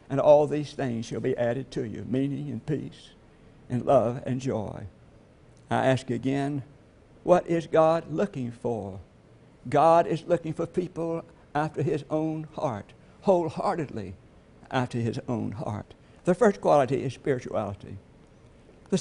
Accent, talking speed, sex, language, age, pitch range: American, 140 wpm, male, English, 60-79, 125-155 Hz